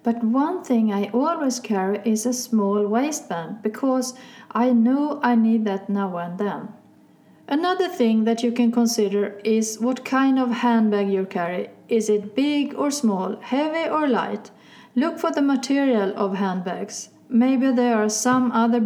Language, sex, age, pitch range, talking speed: Swedish, female, 40-59, 200-250 Hz, 160 wpm